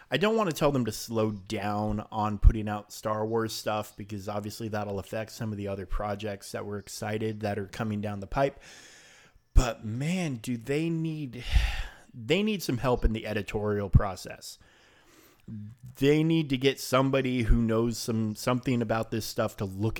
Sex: male